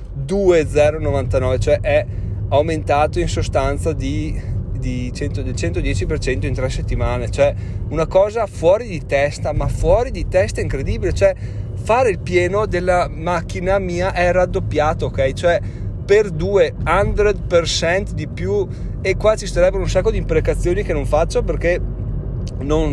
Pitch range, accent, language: 115-175 Hz, native, Italian